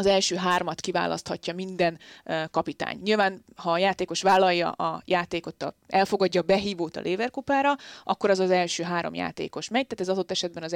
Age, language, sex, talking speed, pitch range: 20-39, Hungarian, female, 165 wpm, 160-195 Hz